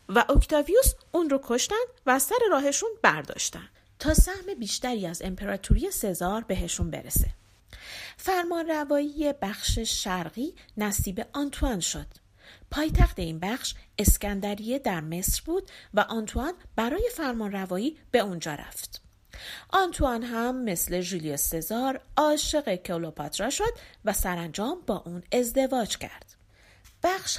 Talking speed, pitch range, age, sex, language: 115 wpm, 190-285 Hz, 40-59, female, Persian